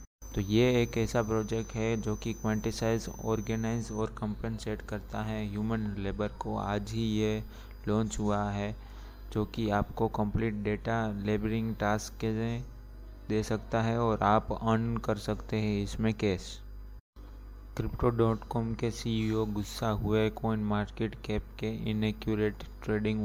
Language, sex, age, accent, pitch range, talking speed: Hindi, male, 20-39, native, 105-115 Hz, 145 wpm